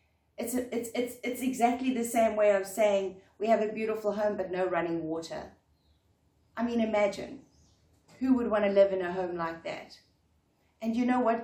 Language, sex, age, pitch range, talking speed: English, female, 30-49, 185-245 Hz, 195 wpm